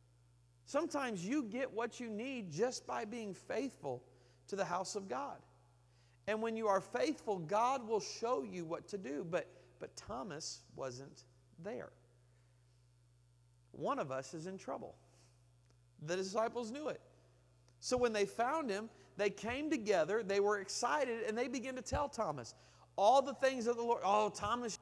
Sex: male